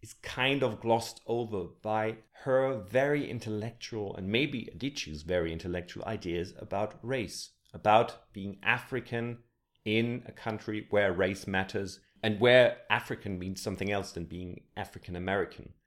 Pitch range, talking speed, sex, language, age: 95-125 Hz, 130 wpm, male, English, 30-49